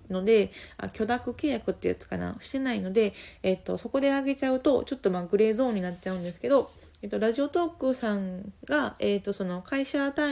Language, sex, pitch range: Japanese, female, 180-245 Hz